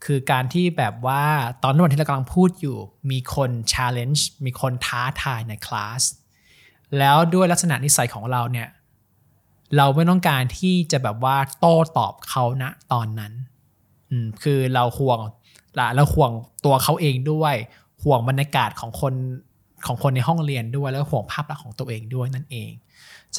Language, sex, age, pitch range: Thai, male, 20-39, 125-150 Hz